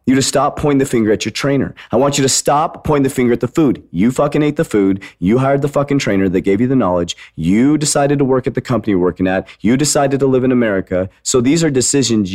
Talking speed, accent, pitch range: 265 wpm, American, 90-125 Hz